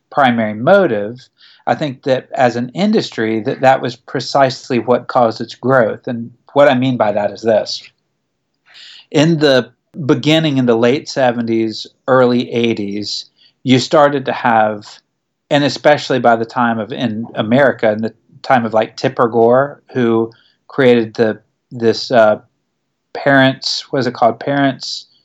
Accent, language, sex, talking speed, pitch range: American, English, male, 145 wpm, 115-135 Hz